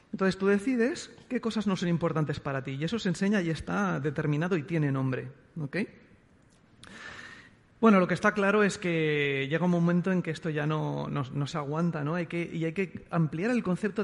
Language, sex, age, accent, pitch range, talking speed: Spanish, male, 40-59, Spanish, 155-195 Hz, 210 wpm